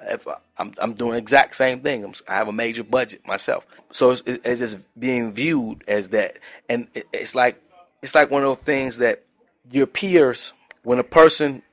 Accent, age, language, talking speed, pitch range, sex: American, 30-49, English, 210 wpm, 105-125 Hz, male